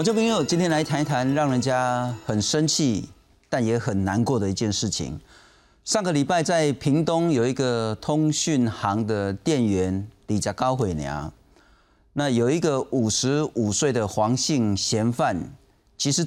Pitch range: 100-135 Hz